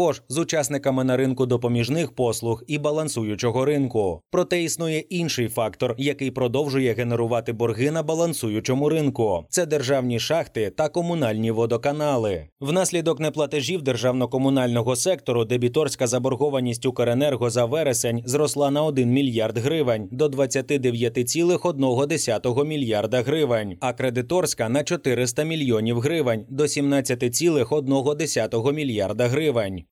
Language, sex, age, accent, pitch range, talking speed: Ukrainian, male, 20-39, native, 120-150 Hz, 110 wpm